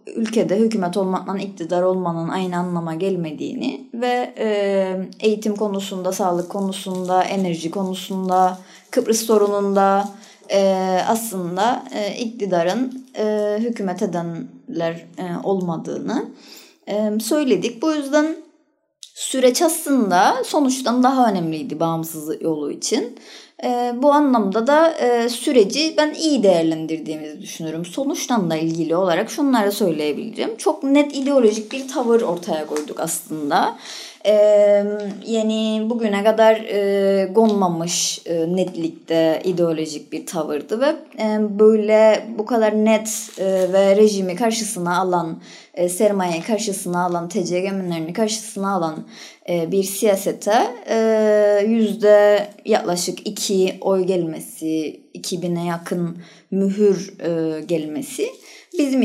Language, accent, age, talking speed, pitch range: Turkish, native, 30-49, 105 wpm, 180-225 Hz